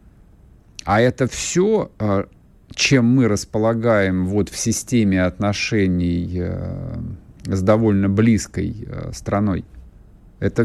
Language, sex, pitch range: Russian, male, 100-125 Hz